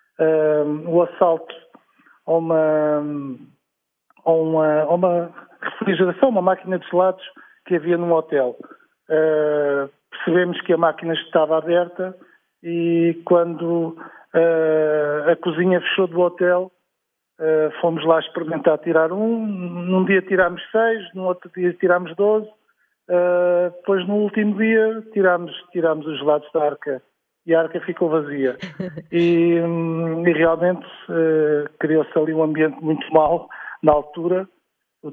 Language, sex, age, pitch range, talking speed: Portuguese, male, 50-69, 155-185 Hz, 130 wpm